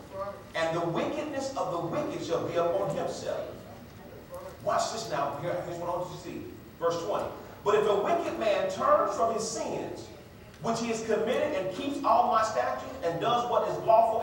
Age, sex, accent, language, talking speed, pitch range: 40-59, male, American, English, 190 wpm, 200-290 Hz